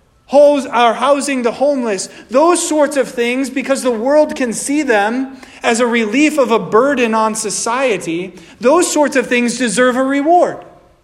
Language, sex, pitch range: English, male, 165-220 Hz